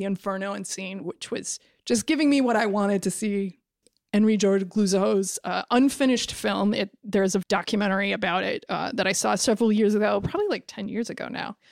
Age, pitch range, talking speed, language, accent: 20-39, 195-230 Hz, 200 wpm, English, American